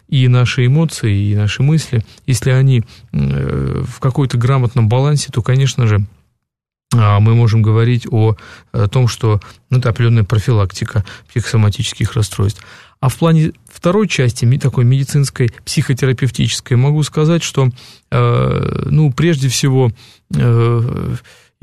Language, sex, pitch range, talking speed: Russian, male, 115-140 Hz, 130 wpm